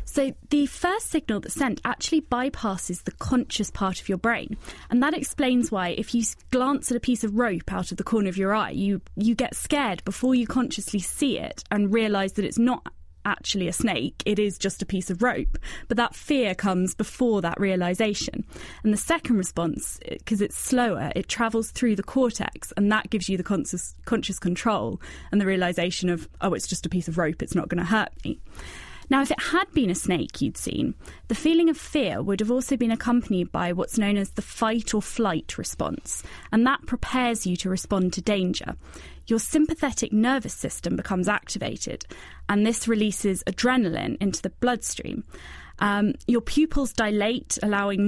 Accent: British